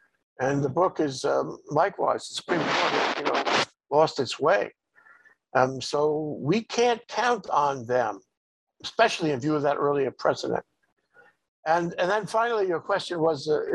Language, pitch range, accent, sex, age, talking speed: English, 145-220 Hz, American, male, 60-79, 160 wpm